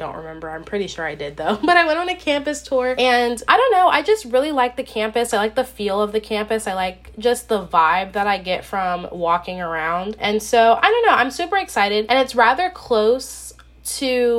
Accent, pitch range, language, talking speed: American, 195-250 Hz, English, 235 wpm